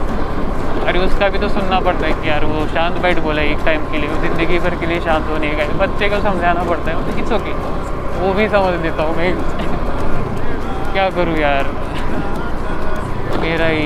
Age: 20-39